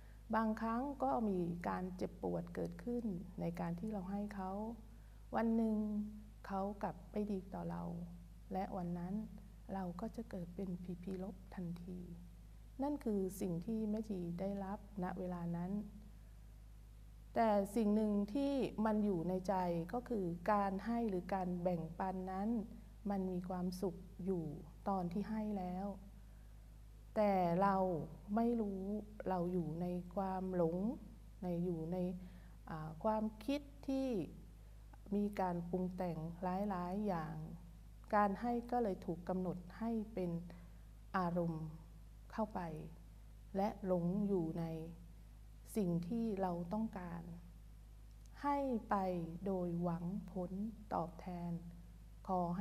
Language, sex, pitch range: Thai, female, 170-205 Hz